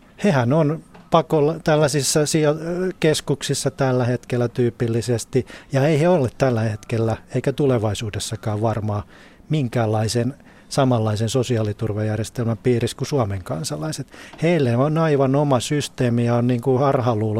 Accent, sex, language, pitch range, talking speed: native, male, Finnish, 115-145 Hz, 110 wpm